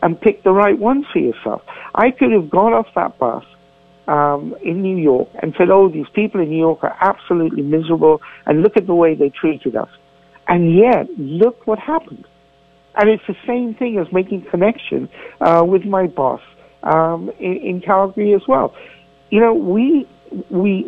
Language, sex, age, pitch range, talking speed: English, male, 60-79, 160-225 Hz, 185 wpm